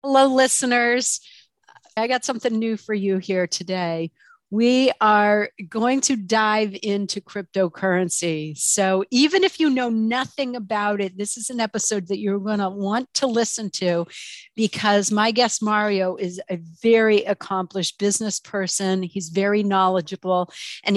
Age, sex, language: 50-69, female, English